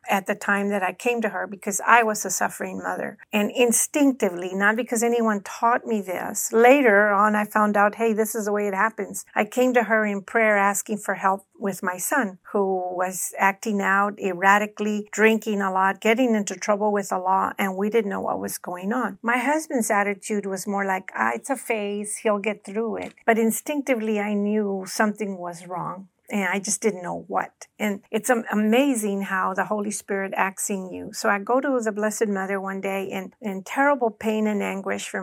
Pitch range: 195-220 Hz